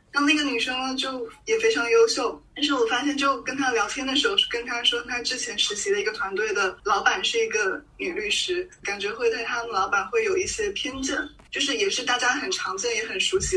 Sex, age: female, 10-29